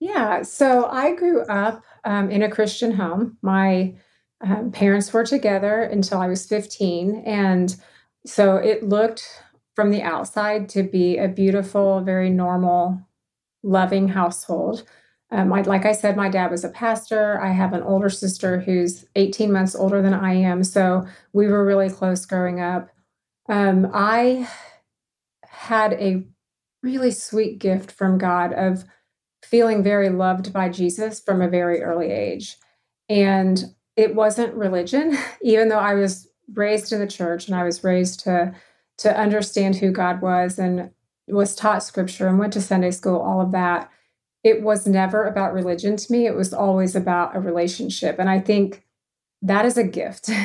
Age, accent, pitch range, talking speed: 30-49, American, 185-215 Hz, 160 wpm